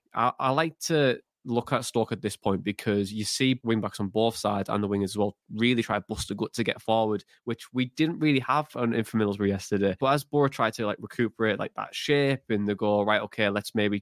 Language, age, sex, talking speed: English, 20-39, male, 250 wpm